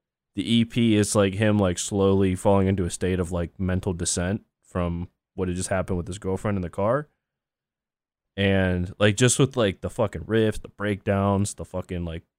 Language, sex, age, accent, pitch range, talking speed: English, male, 20-39, American, 95-115 Hz, 190 wpm